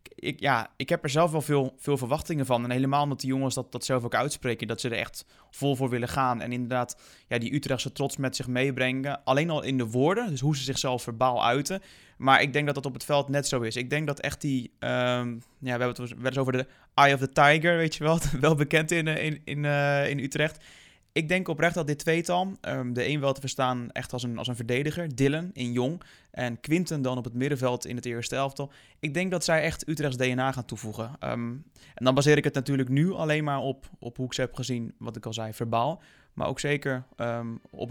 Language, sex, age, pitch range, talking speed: Dutch, male, 20-39, 125-150 Hz, 245 wpm